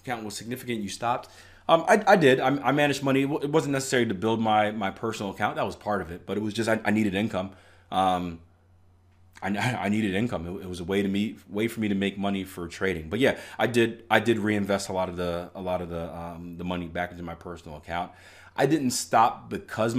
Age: 30-49